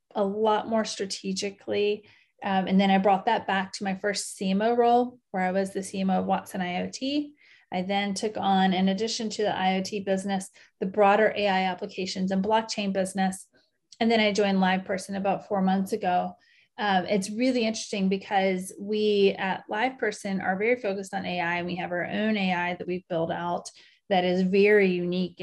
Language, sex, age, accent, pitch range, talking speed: English, female, 30-49, American, 185-210 Hz, 180 wpm